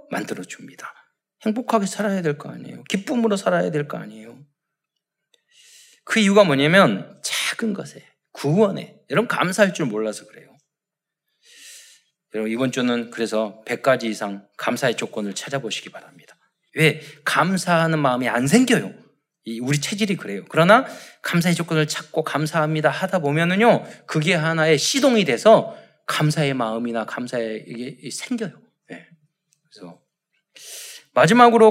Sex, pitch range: male, 135-215 Hz